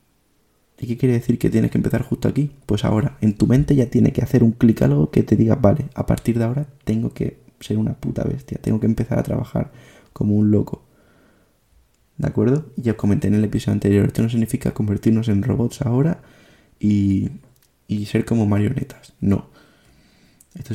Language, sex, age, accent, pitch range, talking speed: Spanish, male, 20-39, Spanish, 110-140 Hz, 195 wpm